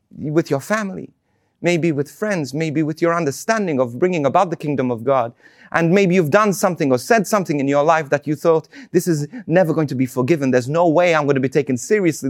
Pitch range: 130-175 Hz